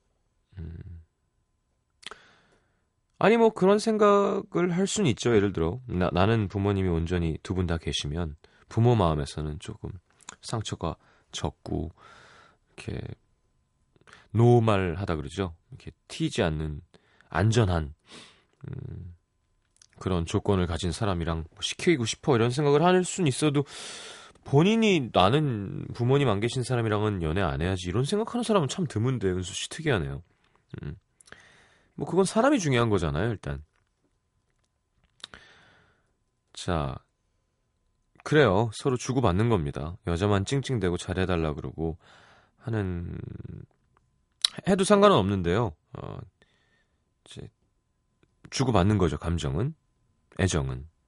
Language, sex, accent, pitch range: Korean, male, native, 85-135 Hz